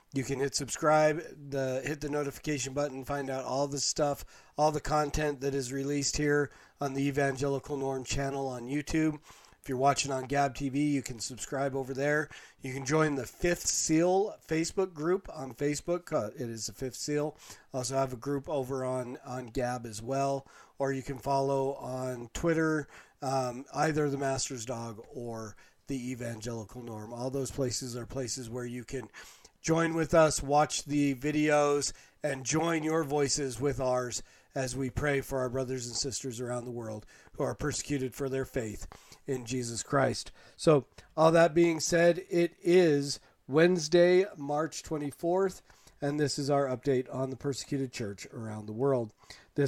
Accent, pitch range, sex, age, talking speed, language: American, 130-150 Hz, male, 40-59, 170 wpm, English